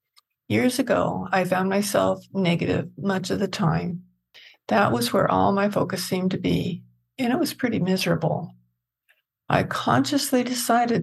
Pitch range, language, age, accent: 140-220 Hz, English, 60-79, American